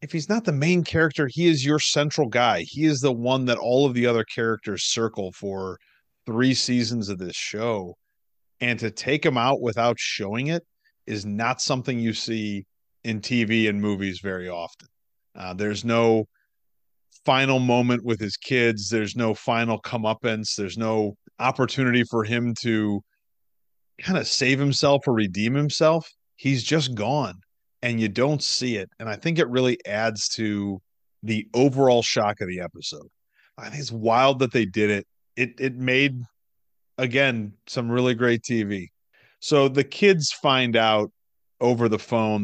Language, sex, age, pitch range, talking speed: English, male, 40-59, 105-135 Hz, 165 wpm